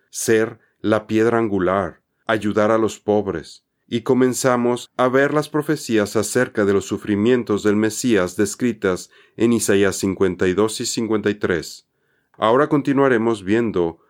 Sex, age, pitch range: male, 40-59, 105-130 Hz